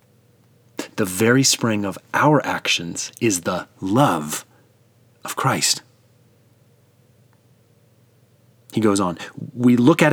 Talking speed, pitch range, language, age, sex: 100 wpm, 115-140 Hz, English, 30-49, male